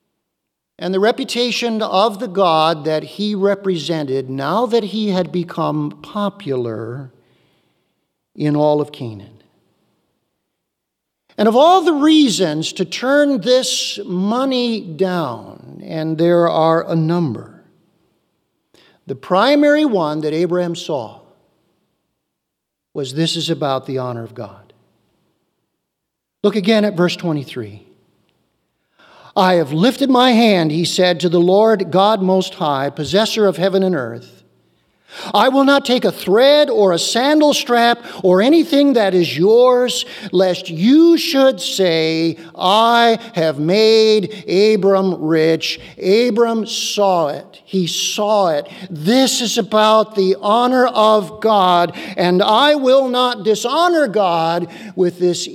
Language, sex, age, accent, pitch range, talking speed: English, male, 50-69, American, 165-235 Hz, 125 wpm